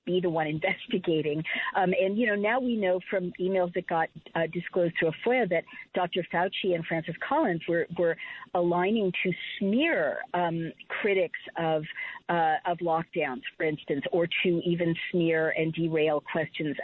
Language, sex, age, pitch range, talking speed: English, female, 50-69, 160-190 Hz, 165 wpm